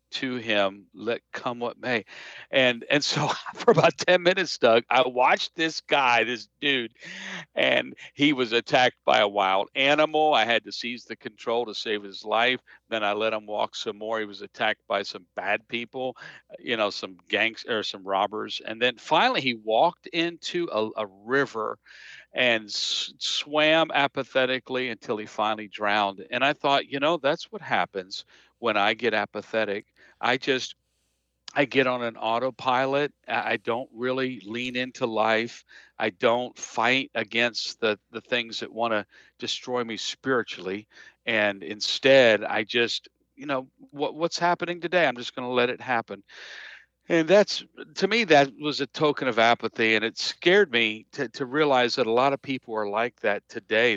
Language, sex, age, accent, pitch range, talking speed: English, male, 50-69, American, 110-140 Hz, 175 wpm